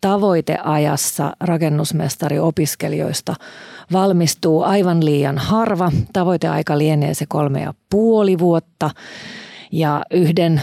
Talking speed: 85 wpm